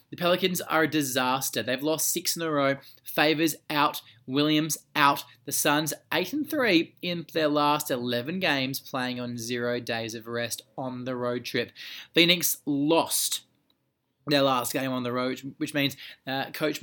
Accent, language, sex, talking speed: Australian, English, male, 170 wpm